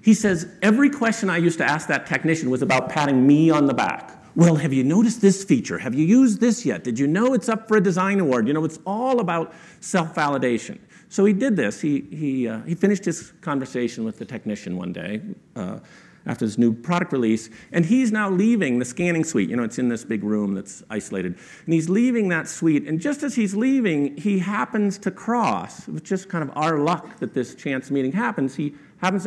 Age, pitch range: 50-69, 145-215 Hz